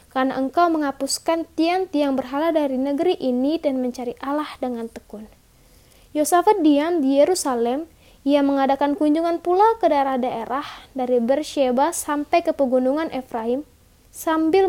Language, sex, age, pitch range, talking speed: Indonesian, female, 20-39, 255-325 Hz, 125 wpm